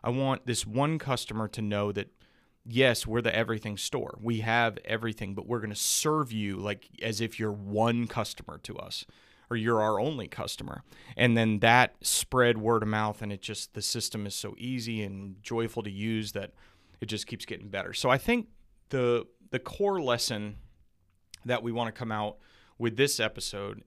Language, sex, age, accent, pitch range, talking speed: English, male, 30-49, American, 105-125 Hz, 190 wpm